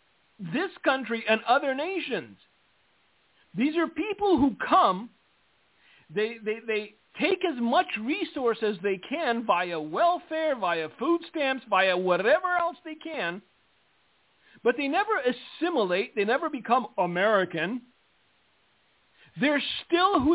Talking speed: 120 wpm